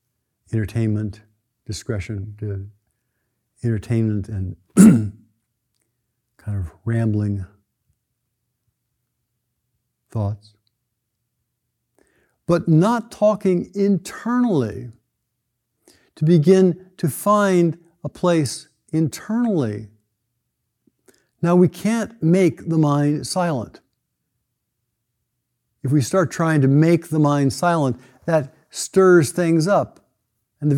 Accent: American